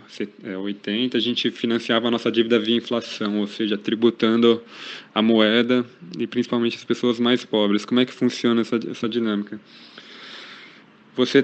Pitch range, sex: 110-125 Hz, male